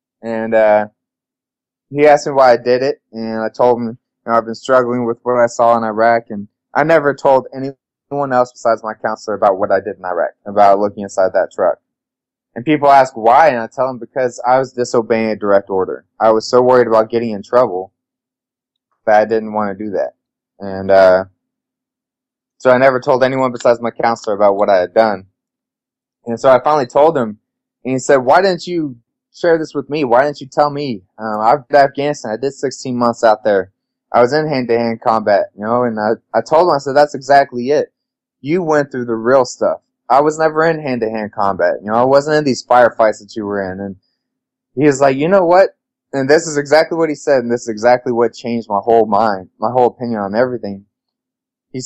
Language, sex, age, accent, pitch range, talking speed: English, male, 20-39, American, 110-140 Hz, 220 wpm